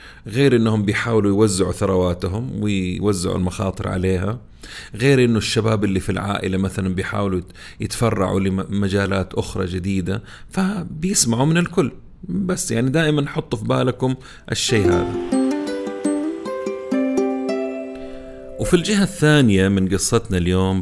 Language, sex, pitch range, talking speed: Arabic, male, 90-115 Hz, 105 wpm